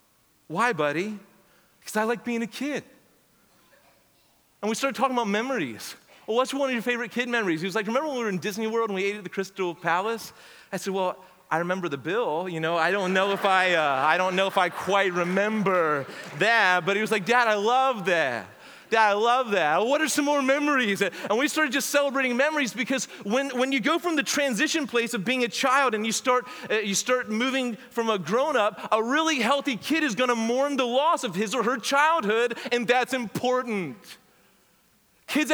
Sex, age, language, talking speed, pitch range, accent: male, 30-49, English, 215 wpm, 205-270 Hz, American